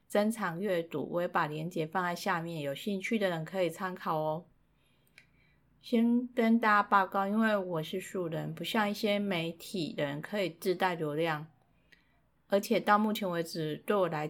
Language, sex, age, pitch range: Chinese, female, 30-49, 155-195 Hz